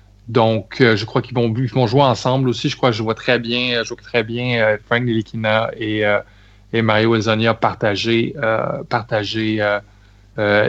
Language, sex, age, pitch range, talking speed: French, male, 20-39, 110-135 Hz, 190 wpm